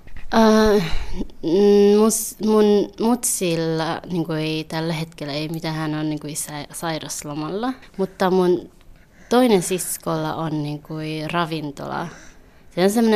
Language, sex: Finnish, female